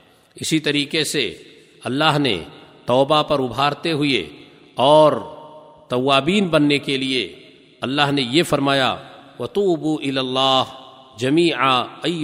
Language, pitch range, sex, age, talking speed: Urdu, 130-155 Hz, male, 50-69, 120 wpm